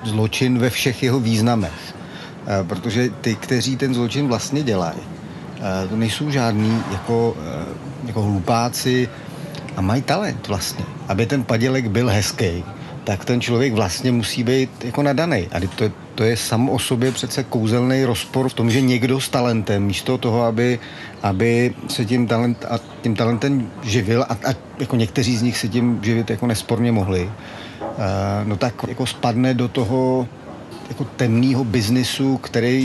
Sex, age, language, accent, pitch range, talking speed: male, 40-59, Czech, native, 110-130 Hz, 155 wpm